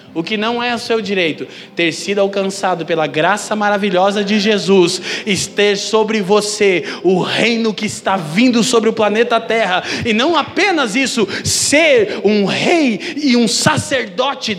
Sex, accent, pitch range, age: male, Brazilian, 155-205 Hz, 20-39